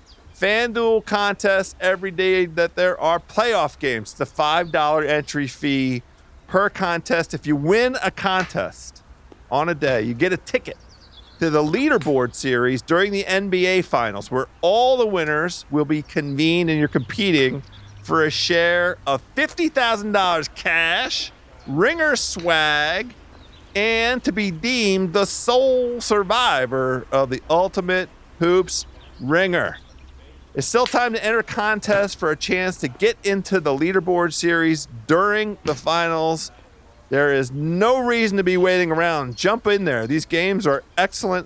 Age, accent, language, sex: 50-69, American, English, male